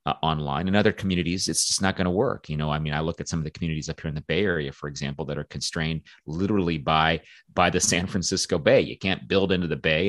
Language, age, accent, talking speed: English, 30-49, American, 275 wpm